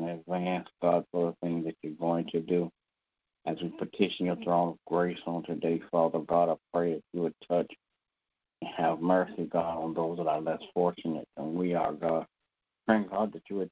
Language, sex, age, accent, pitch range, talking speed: English, male, 60-79, American, 85-90 Hz, 200 wpm